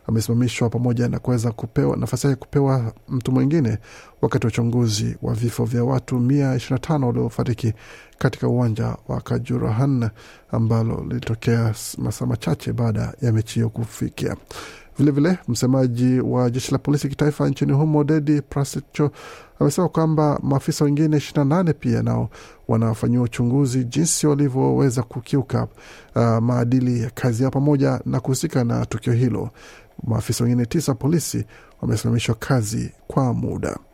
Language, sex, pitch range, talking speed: Swahili, male, 115-140 Hz, 125 wpm